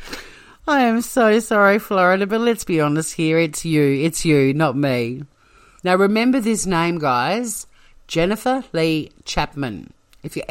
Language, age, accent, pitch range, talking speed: English, 50-69, Australian, 145-200 Hz, 150 wpm